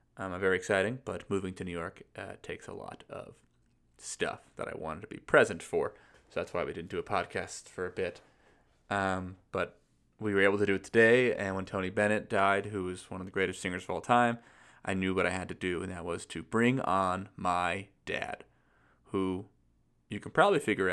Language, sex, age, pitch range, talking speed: English, male, 20-39, 95-110 Hz, 220 wpm